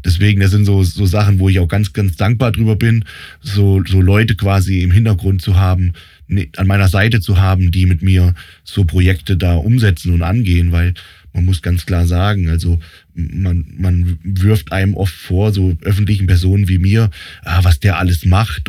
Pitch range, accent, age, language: 90-105 Hz, German, 20-39, German